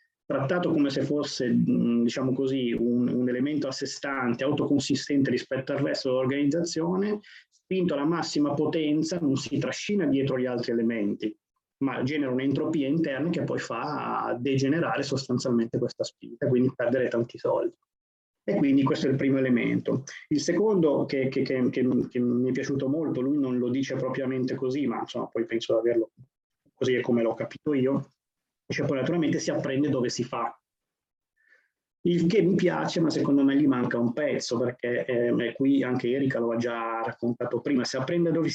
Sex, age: male, 30-49